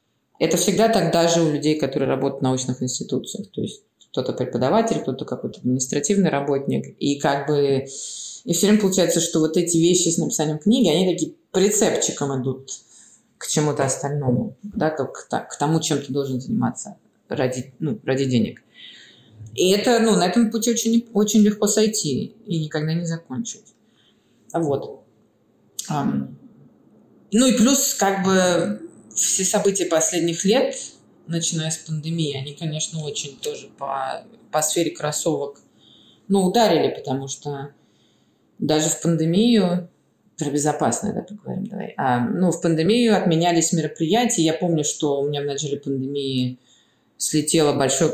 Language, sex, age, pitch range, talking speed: Russian, female, 20-39, 140-205 Hz, 140 wpm